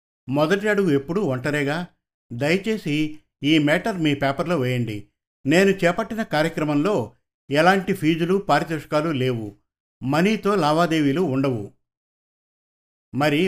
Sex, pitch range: male, 135-175 Hz